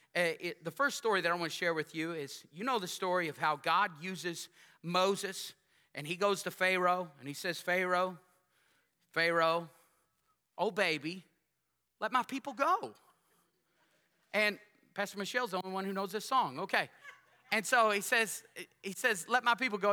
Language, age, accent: English, 30-49, American